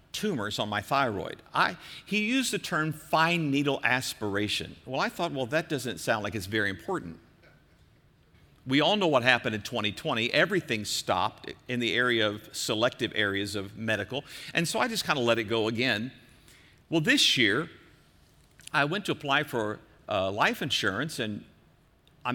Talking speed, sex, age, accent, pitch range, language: 170 wpm, male, 50-69, American, 120-175 Hz, English